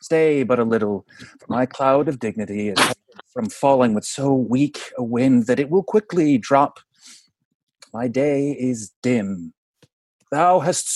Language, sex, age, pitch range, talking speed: English, male, 30-49, 130-170 Hz, 155 wpm